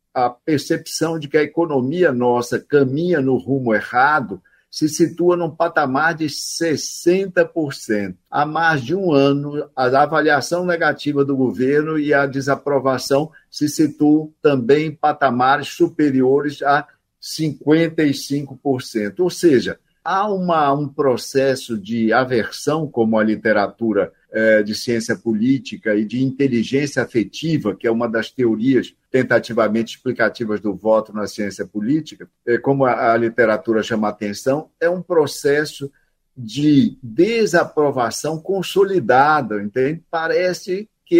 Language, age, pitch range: Portuguese, 60-79, 130-170 Hz